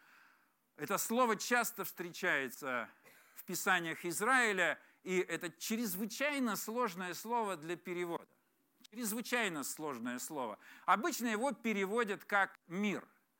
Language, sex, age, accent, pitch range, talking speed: Russian, male, 50-69, native, 195-235 Hz, 100 wpm